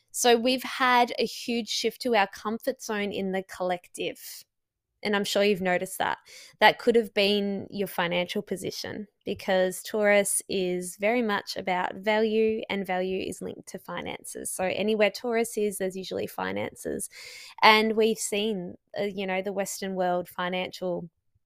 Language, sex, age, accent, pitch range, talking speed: English, female, 20-39, Australian, 185-220 Hz, 155 wpm